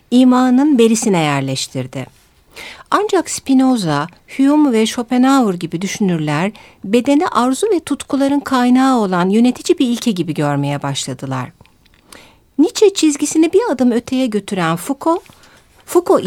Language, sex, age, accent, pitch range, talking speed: Turkish, female, 60-79, native, 165-255 Hz, 110 wpm